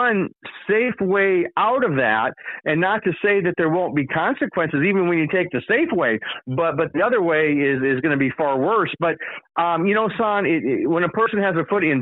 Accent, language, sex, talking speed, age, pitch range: American, English, male, 235 wpm, 50-69, 165-210 Hz